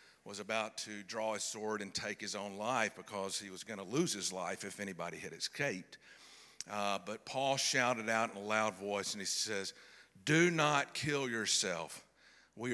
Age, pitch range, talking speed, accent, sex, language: 50-69, 95-115 Hz, 190 wpm, American, male, English